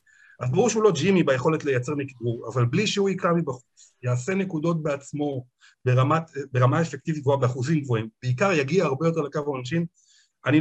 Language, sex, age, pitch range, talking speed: Hebrew, male, 50-69, 140-180 Hz, 165 wpm